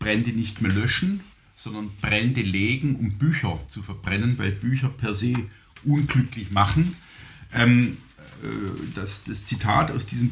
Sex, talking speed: male, 135 wpm